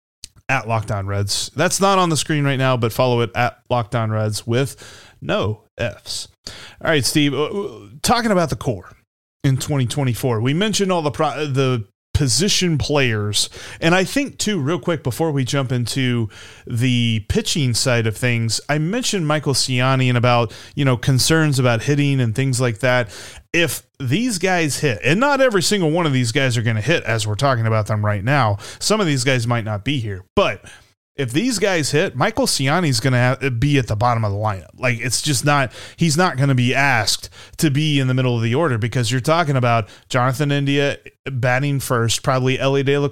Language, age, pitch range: English, 30-49, 120-150 Hz